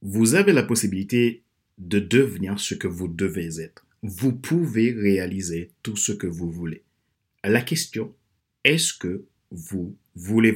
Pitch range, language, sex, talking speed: 95-120 Hz, French, male, 140 wpm